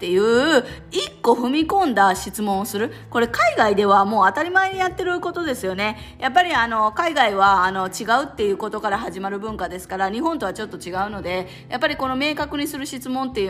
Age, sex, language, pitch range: 20-39, female, Japanese, 195-275 Hz